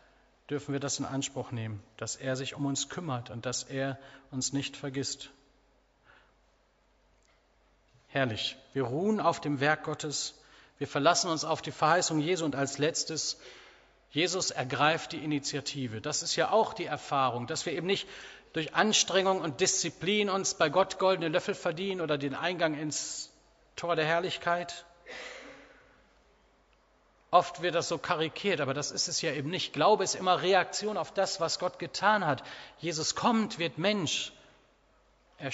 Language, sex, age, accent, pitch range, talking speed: German, male, 40-59, German, 140-175 Hz, 155 wpm